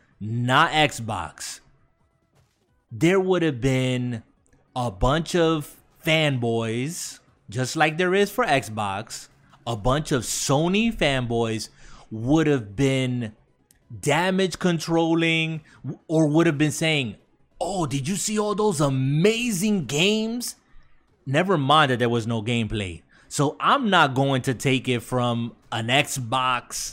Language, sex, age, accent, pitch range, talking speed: English, male, 30-49, American, 125-165 Hz, 125 wpm